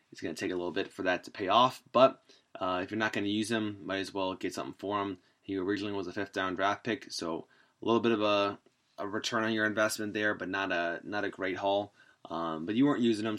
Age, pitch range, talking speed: 20-39, 100-120 Hz, 265 wpm